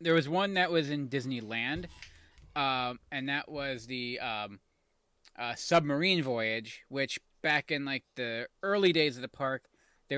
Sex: male